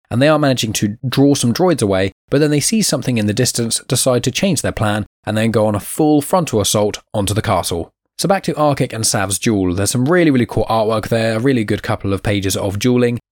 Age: 10-29